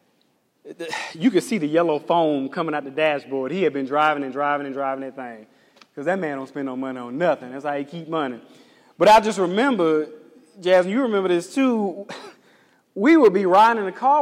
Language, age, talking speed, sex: English, 20-39, 210 wpm, male